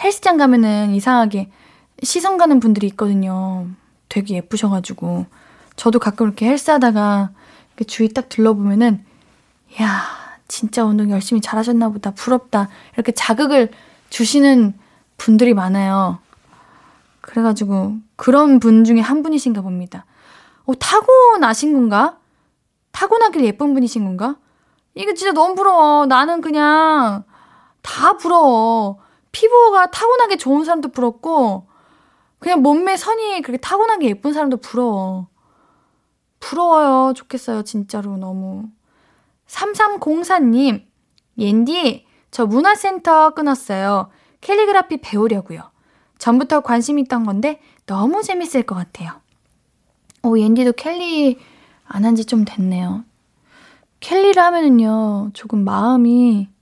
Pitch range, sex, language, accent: 210-305 Hz, female, Korean, native